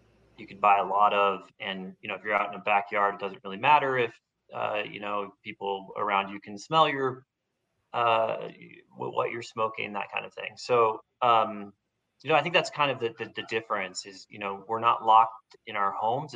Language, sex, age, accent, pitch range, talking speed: English, male, 30-49, American, 95-115 Hz, 215 wpm